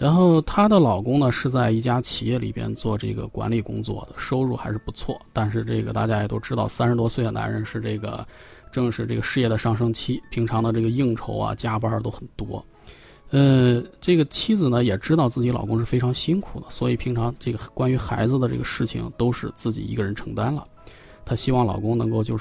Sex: male